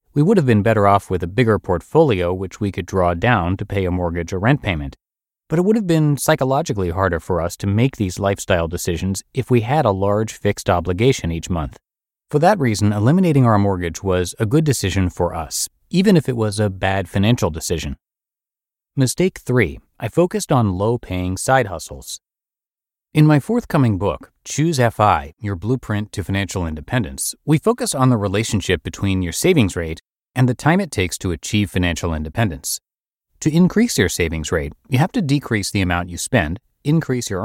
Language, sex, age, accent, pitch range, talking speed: English, male, 30-49, American, 90-130 Hz, 185 wpm